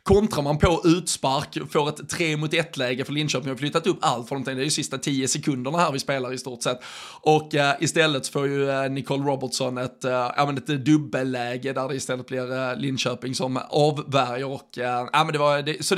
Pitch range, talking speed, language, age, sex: 130-155 Hz, 230 wpm, Swedish, 20-39, male